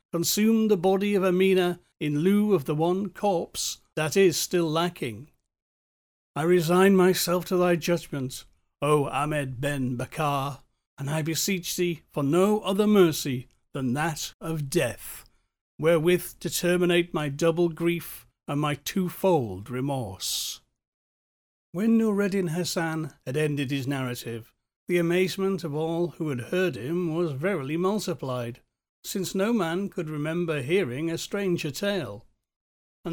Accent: British